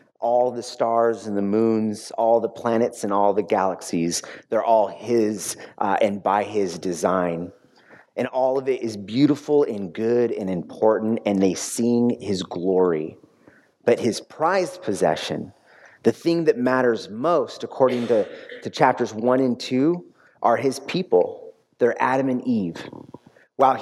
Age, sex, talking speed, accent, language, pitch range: 30-49, male, 150 wpm, American, English, 105-145 Hz